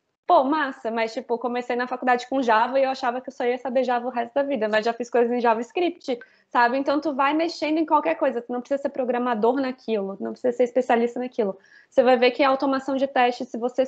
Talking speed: 250 wpm